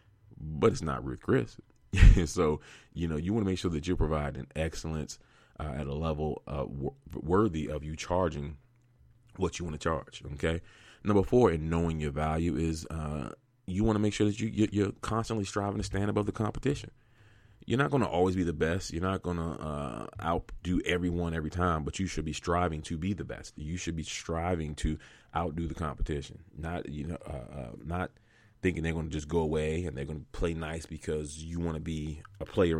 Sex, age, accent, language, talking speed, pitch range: male, 30-49, American, English, 205 wpm, 75-105 Hz